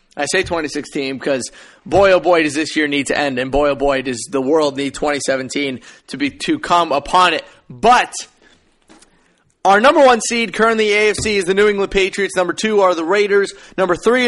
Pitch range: 160-200 Hz